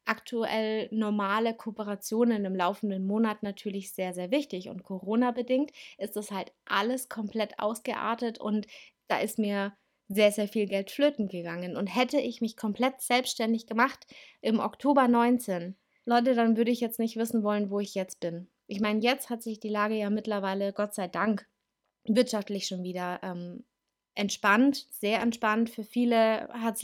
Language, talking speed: German, 165 wpm